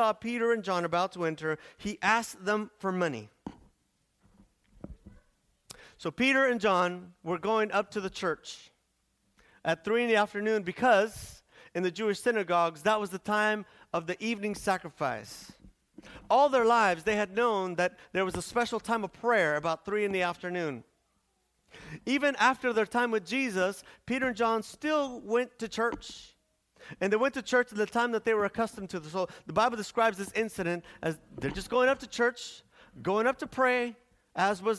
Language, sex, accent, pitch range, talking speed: English, male, American, 180-230 Hz, 180 wpm